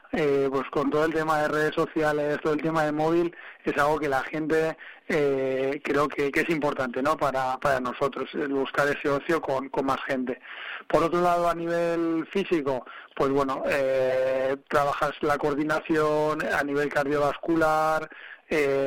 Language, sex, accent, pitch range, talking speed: Spanish, male, Spanish, 140-155 Hz, 170 wpm